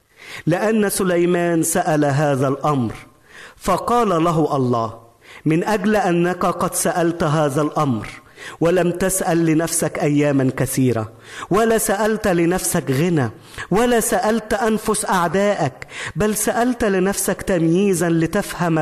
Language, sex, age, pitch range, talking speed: Arabic, male, 40-59, 145-205 Hz, 105 wpm